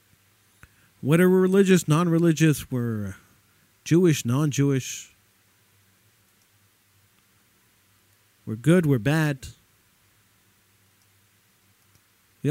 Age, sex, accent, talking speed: 50-69, male, American, 60 wpm